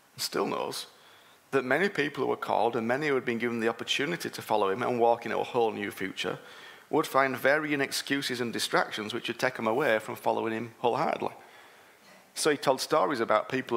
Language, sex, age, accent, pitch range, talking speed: English, male, 30-49, British, 110-135 Hz, 205 wpm